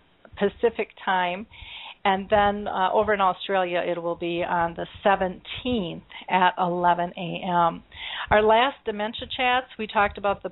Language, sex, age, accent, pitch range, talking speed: English, female, 40-59, American, 185-215 Hz, 145 wpm